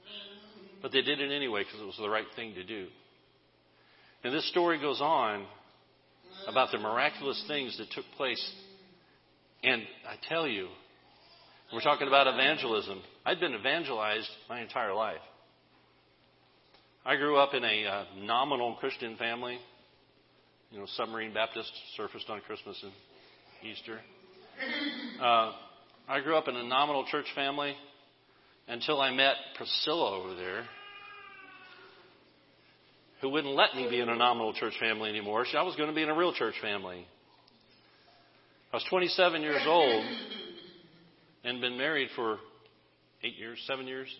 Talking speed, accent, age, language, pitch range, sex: 145 wpm, American, 50-69, English, 120-180 Hz, male